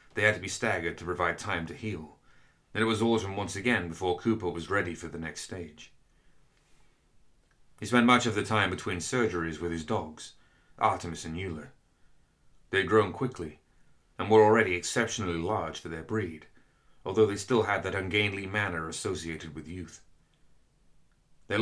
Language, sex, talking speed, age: English, male, 170 wpm, 30-49